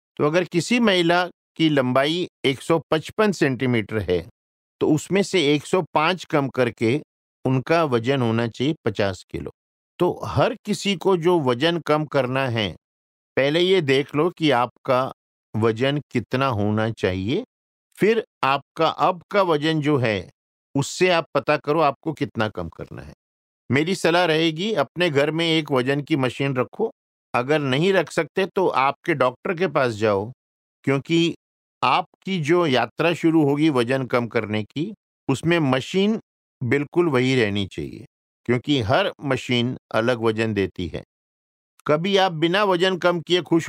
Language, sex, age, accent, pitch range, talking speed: Hindi, male, 50-69, native, 120-170 Hz, 145 wpm